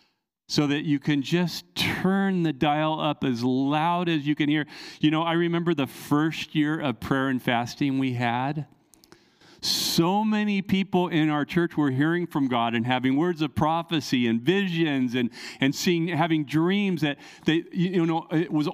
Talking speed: 180 wpm